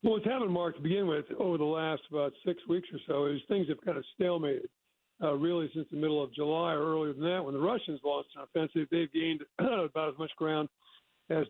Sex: male